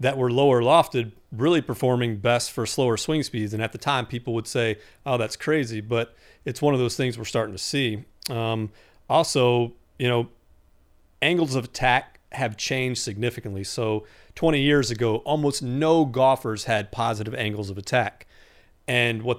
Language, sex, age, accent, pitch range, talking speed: English, male, 40-59, American, 110-130 Hz, 170 wpm